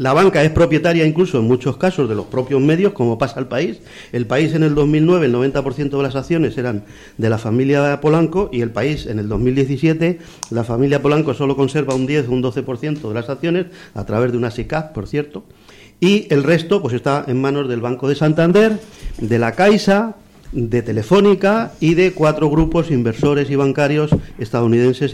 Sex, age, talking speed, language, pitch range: male, 50-69, 190 wpm, Spanish, 120-160 Hz